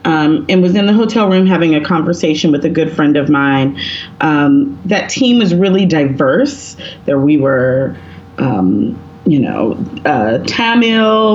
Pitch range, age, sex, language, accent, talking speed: 155-220 Hz, 30-49, female, English, American, 160 wpm